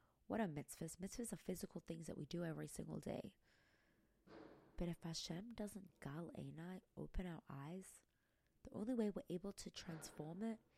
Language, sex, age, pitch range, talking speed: English, female, 20-39, 175-215 Hz, 165 wpm